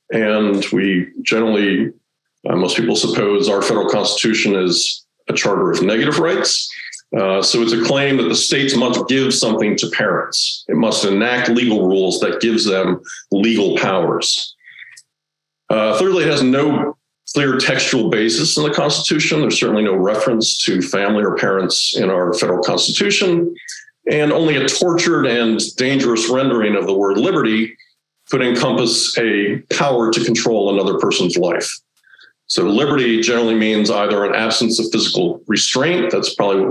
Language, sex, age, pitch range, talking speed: English, male, 50-69, 105-140 Hz, 155 wpm